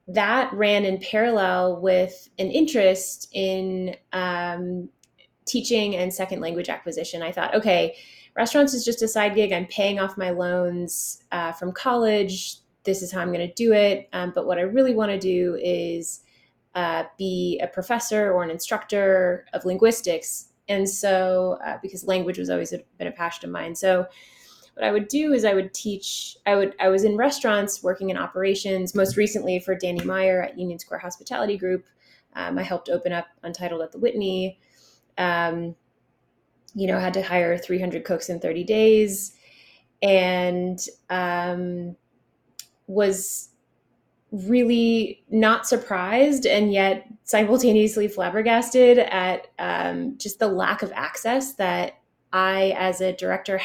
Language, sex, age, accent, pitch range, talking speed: English, female, 20-39, American, 180-215 Hz, 155 wpm